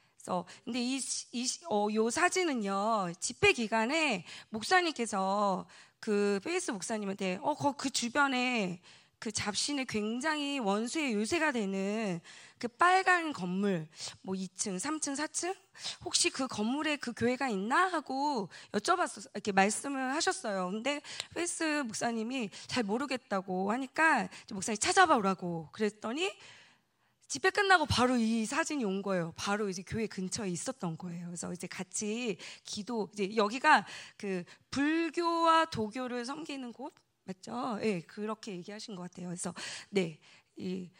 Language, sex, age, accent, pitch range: Korean, female, 20-39, native, 190-280 Hz